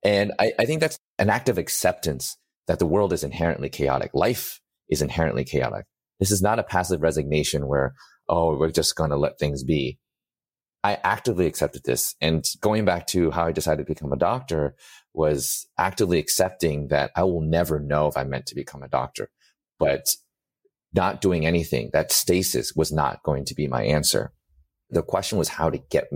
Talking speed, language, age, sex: 190 wpm, English, 30-49, male